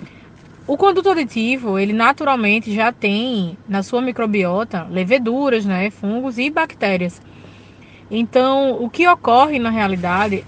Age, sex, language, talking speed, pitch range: 20-39, female, Portuguese, 120 wpm, 205-265 Hz